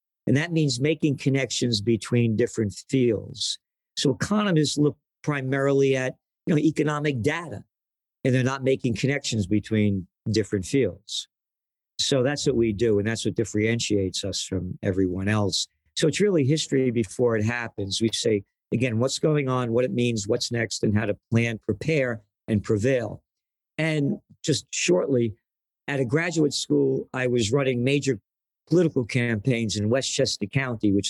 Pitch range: 105-135 Hz